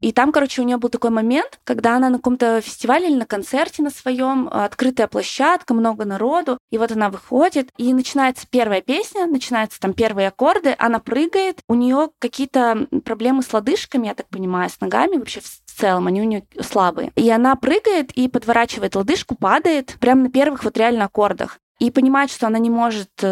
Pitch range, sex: 220-275 Hz, female